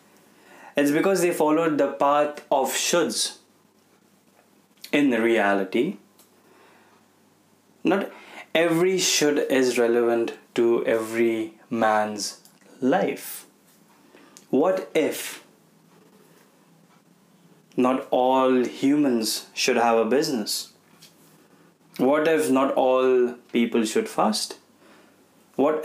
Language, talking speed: Hindi, 85 wpm